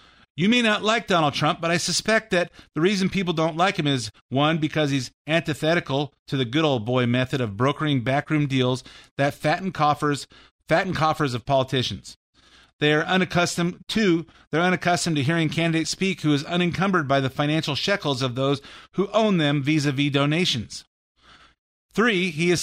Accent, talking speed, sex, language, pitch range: American, 170 wpm, male, English, 140-175 Hz